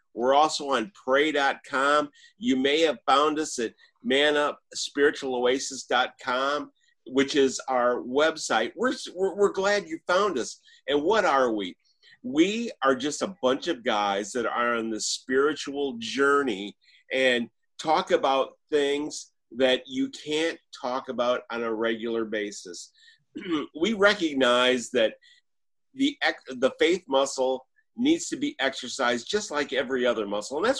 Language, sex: English, male